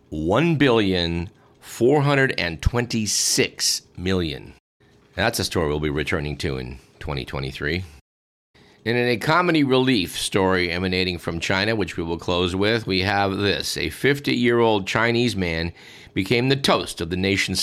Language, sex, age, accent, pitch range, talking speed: English, male, 50-69, American, 95-125 Hz, 145 wpm